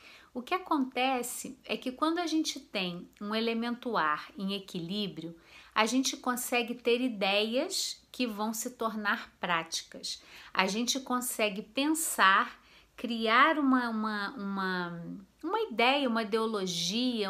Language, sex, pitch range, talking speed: Portuguese, female, 200-265 Hz, 120 wpm